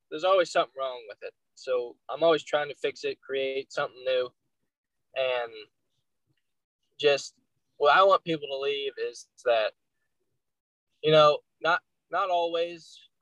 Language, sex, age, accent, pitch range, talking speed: English, male, 10-29, American, 135-185 Hz, 140 wpm